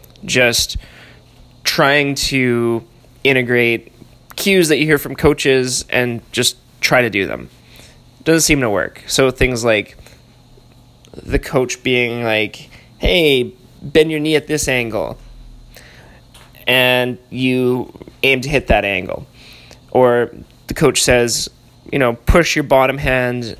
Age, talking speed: 20-39, 130 wpm